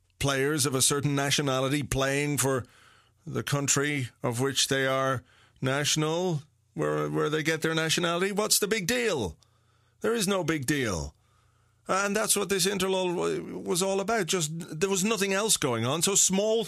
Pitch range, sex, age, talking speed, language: 120-195 Hz, male, 30-49, 160 wpm, English